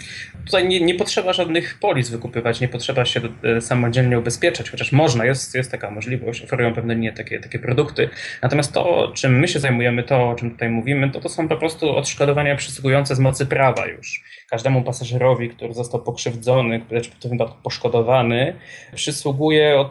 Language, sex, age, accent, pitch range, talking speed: Polish, male, 20-39, native, 120-140 Hz, 170 wpm